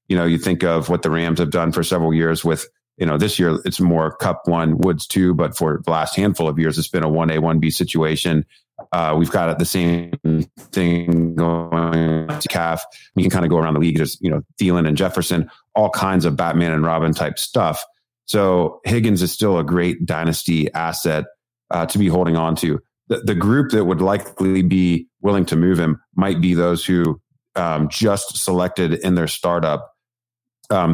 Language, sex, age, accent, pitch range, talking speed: English, male, 30-49, American, 80-95 Hz, 205 wpm